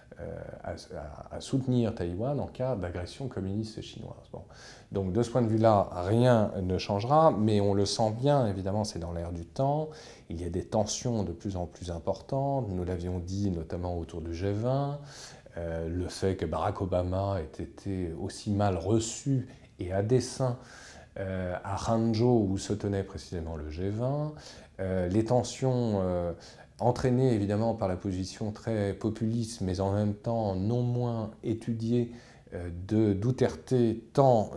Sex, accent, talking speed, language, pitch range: male, French, 160 wpm, French, 95-120 Hz